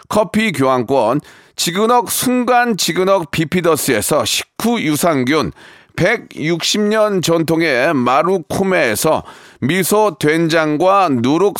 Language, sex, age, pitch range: Korean, male, 40-59, 165-215 Hz